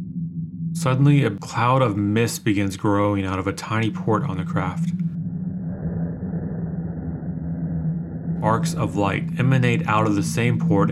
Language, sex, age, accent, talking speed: English, male, 30-49, American, 130 wpm